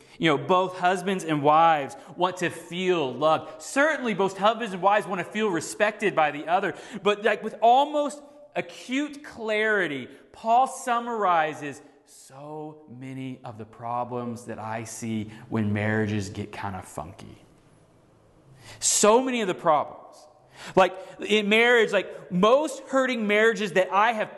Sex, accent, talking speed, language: male, American, 145 wpm, English